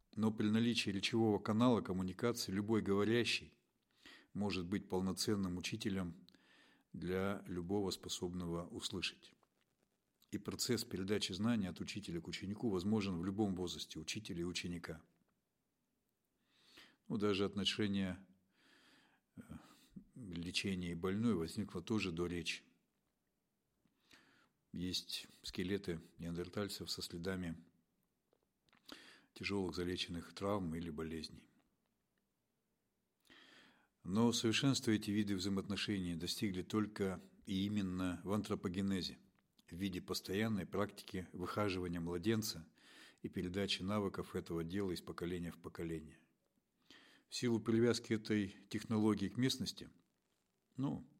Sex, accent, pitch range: male, native, 90-105 Hz